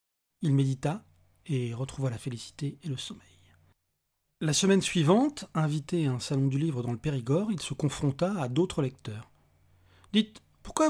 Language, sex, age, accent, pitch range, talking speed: French, male, 40-59, French, 125-180 Hz, 165 wpm